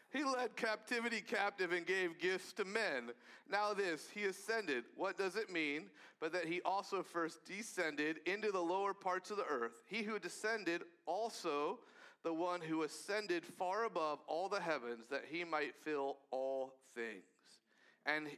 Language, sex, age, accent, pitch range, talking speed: English, male, 40-59, American, 170-230 Hz, 165 wpm